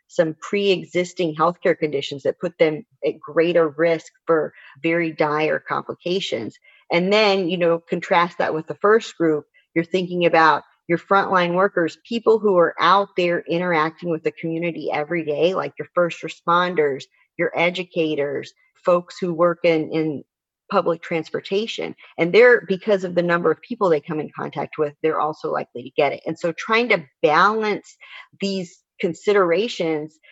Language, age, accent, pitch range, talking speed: English, 40-59, American, 160-190 Hz, 160 wpm